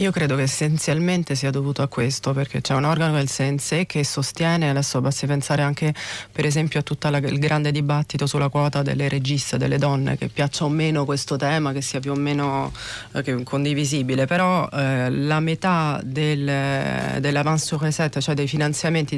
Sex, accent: female, native